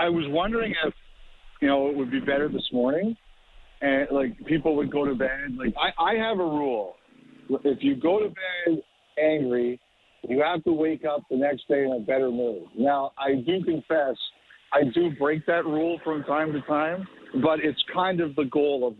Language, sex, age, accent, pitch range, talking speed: English, male, 50-69, American, 140-175 Hz, 200 wpm